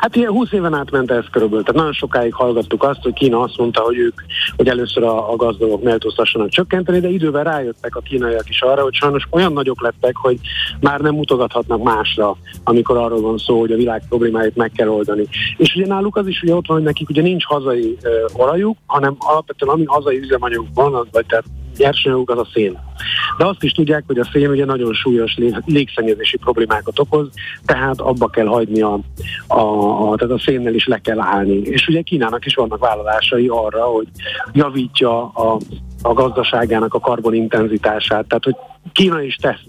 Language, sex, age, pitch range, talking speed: Hungarian, male, 50-69, 110-150 Hz, 190 wpm